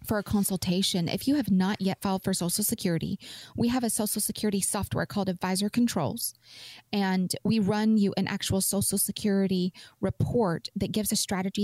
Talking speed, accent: 175 wpm, American